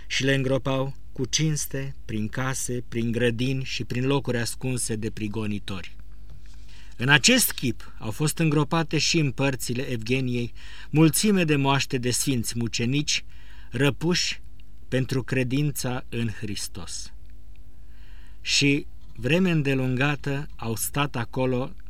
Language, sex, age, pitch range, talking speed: Romanian, male, 50-69, 110-145 Hz, 115 wpm